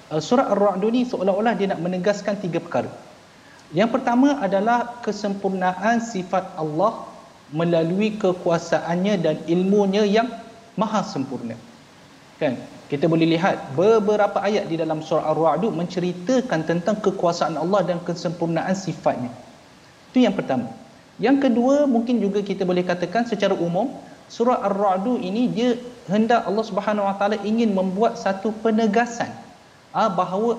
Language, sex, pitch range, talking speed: Malayalam, male, 170-220 Hz, 130 wpm